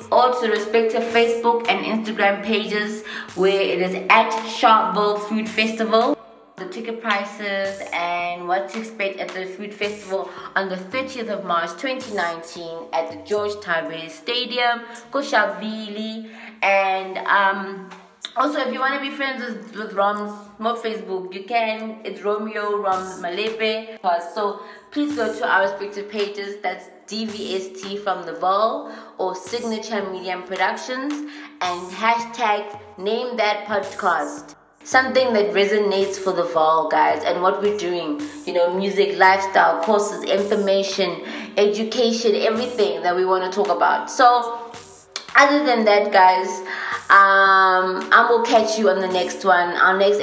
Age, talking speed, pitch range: 20-39, 145 wpm, 180-220 Hz